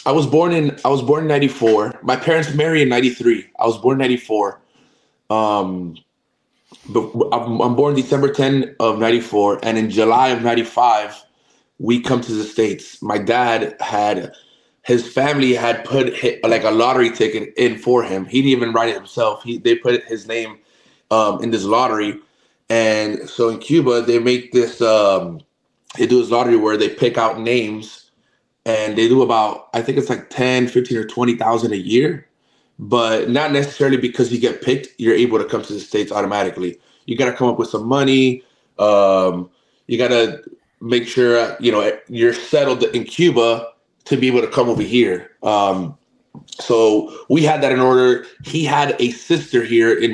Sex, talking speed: male, 180 wpm